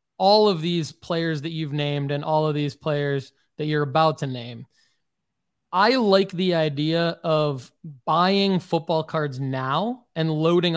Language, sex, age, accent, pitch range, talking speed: English, male, 20-39, American, 145-180 Hz, 155 wpm